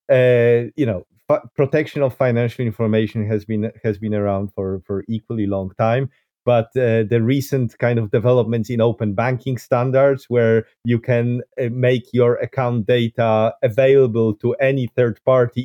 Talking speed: 160 wpm